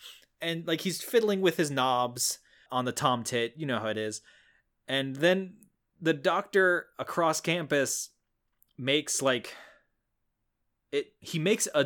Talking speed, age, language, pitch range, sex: 140 wpm, 20-39, English, 110-145 Hz, male